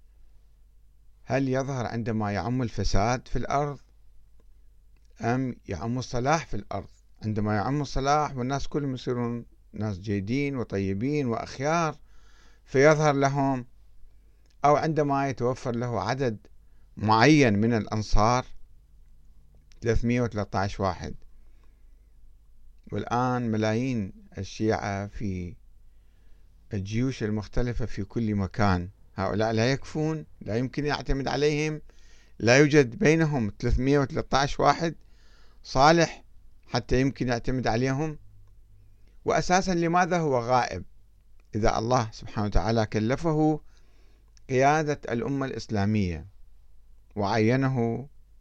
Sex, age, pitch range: male, 50-69, 100-135 Hz